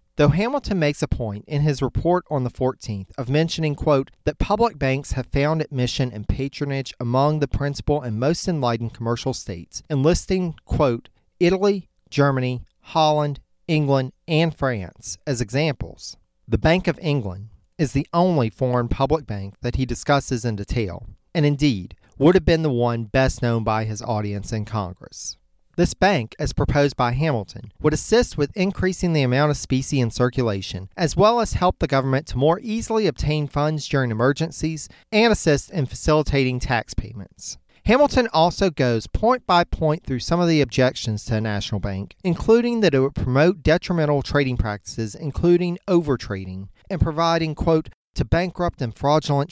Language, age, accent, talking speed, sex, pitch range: English, 40-59, American, 165 wpm, male, 120-160 Hz